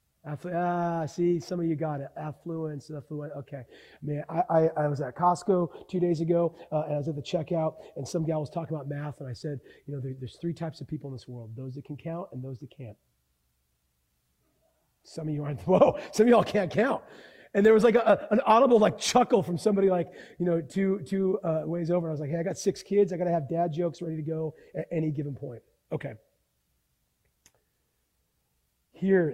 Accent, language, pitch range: American, English, 155-215 Hz